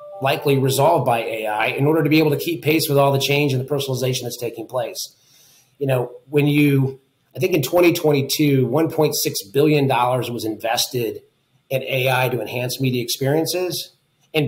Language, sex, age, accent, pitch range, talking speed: English, male, 30-49, American, 130-150 Hz, 170 wpm